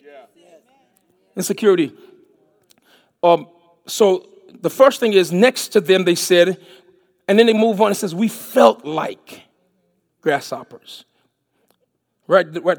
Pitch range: 190-245 Hz